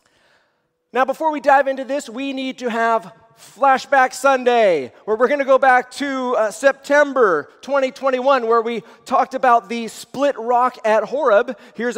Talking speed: 160 wpm